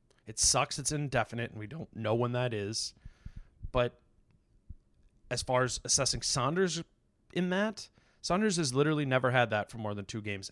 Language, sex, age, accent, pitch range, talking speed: English, male, 30-49, American, 110-145 Hz, 170 wpm